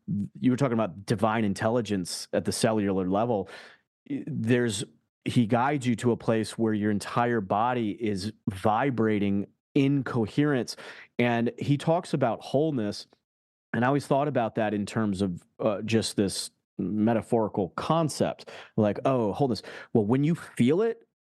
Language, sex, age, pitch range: English, male, 30-49, 105-125 Hz